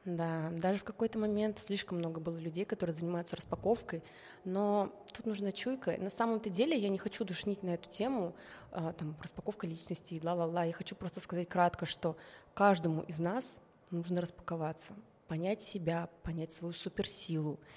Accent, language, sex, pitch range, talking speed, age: native, Russian, female, 170-205 Hz, 160 wpm, 20-39